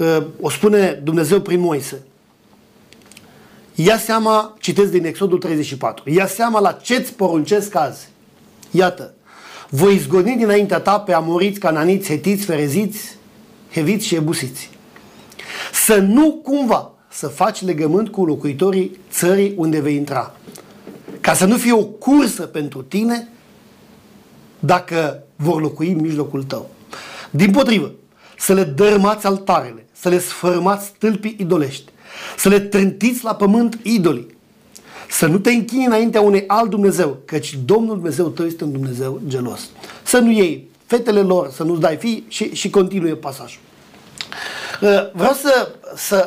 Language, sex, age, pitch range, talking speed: Romanian, male, 50-69, 165-215 Hz, 135 wpm